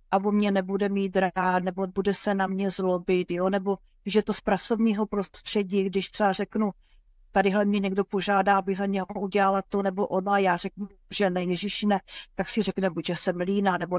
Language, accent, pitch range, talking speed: Czech, native, 195-215 Hz, 195 wpm